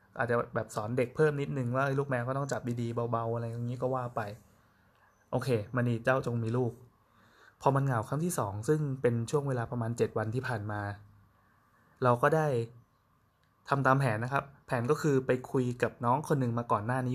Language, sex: Thai, male